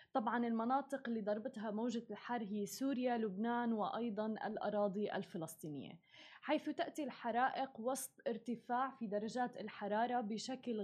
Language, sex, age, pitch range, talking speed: Arabic, female, 20-39, 210-250 Hz, 115 wpm